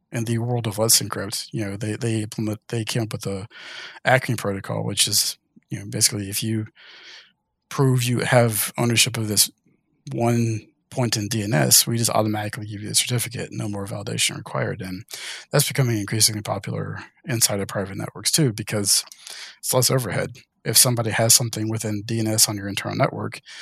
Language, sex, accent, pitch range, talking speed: English, male, American, 105-125 Hz, 180 wpm